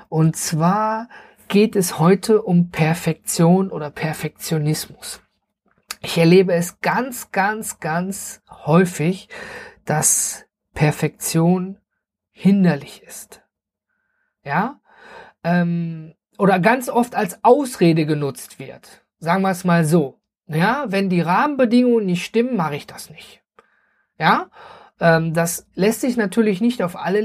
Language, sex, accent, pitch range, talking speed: German, male, German, 175-220 Hz, 110 wpm